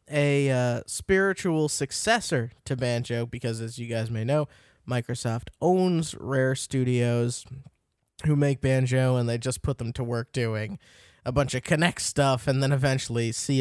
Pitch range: 120-155 Hz